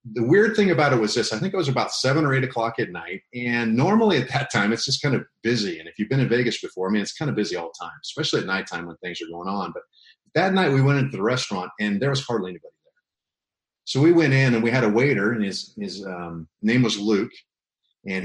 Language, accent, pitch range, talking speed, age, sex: English, American, 105-135 Hz, 275 wpm, 40-59, male